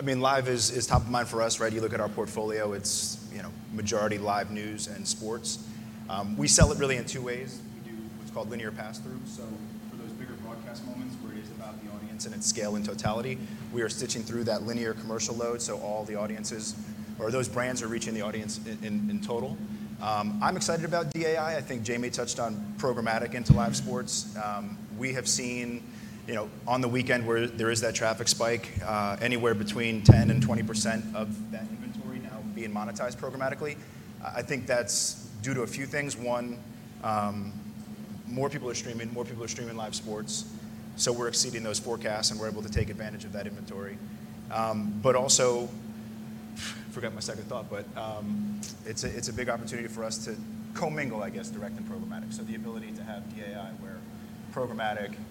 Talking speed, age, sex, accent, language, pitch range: 205 wpm, 30-49, male, American, English, 110-120 Hz